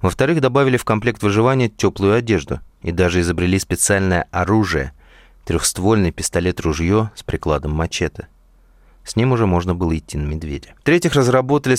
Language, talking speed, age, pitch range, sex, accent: Russian, 135 wpm, 30-49, 85-120 Hz, male, native